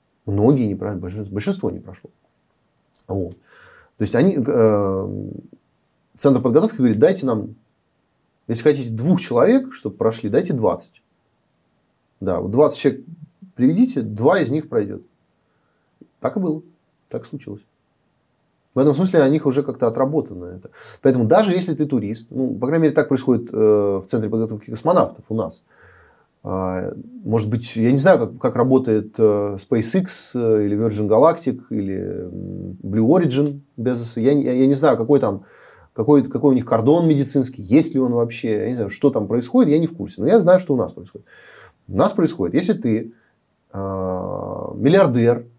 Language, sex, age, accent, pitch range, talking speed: Russian, male, 30-49, native, 110-150 Hz, 160 wpm